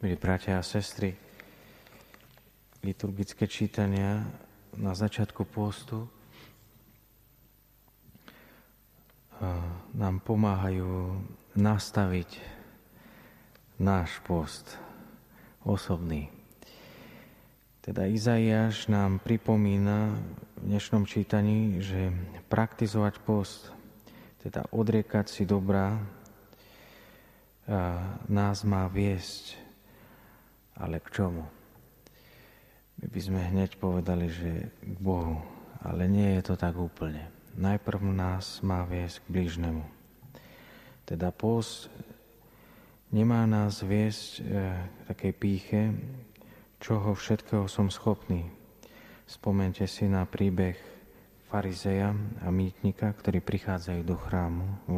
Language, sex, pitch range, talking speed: Slovak, male, 95-105 Hz, 85 wpm